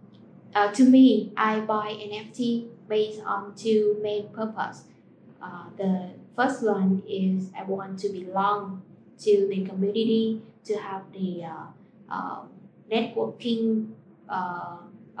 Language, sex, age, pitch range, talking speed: Vietnamese, female, 20-39, 190-215 Hz, 120 wpm